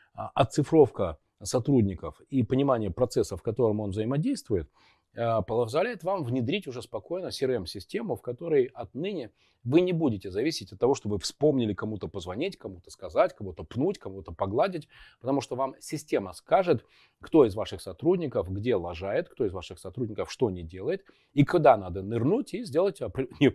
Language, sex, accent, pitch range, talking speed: Russian, male, native, 105-140 Hz, 150 wpm